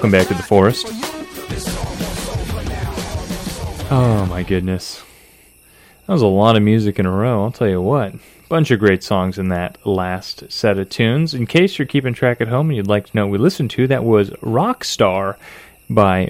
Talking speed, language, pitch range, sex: 190 wpm, English, 100-130 Hz, male